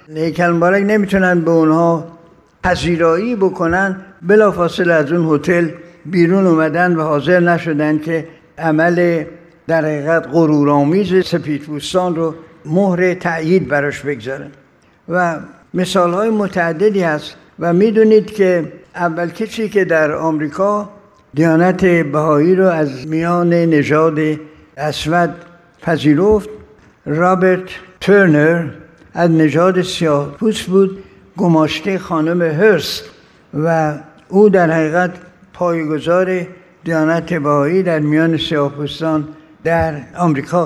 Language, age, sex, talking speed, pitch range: Persian, 60-79, male, 100 wpm, 155-185 Hz